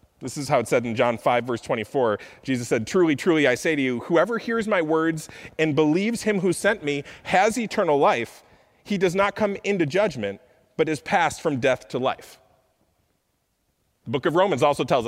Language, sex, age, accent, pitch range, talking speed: English, male, 30-49, American, 125-165 Hz, 200 wpm